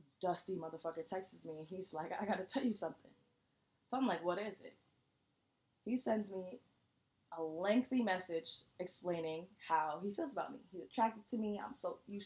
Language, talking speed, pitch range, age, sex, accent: English, 185 wpm, 160-205 Hz, 20-39, female, American